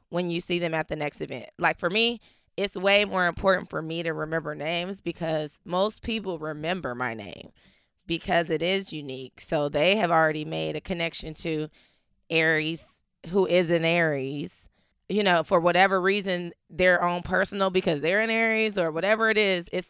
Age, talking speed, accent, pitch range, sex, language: 20-39, 180 wpm, American, 155-185 Hz, female, English